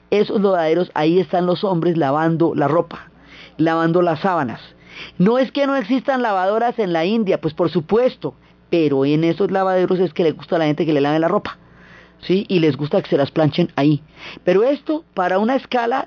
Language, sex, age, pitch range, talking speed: Spanish, female, 30-49, 155-195 Hz, 200 wpm